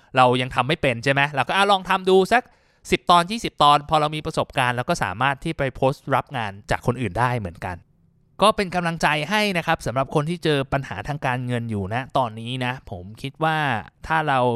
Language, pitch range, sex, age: Thai, 115-150 Hz, male, 20-39